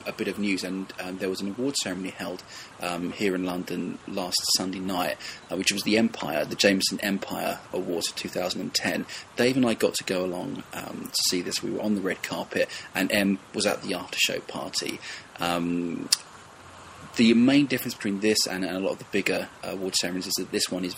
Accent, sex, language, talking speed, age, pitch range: British, male, English, 215 wpm, 20-39, 90-105 Hz